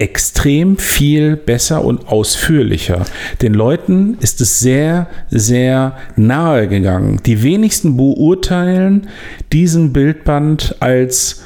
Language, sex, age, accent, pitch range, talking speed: German, male, 50-69, German, 110-135 Hz, 100 wpm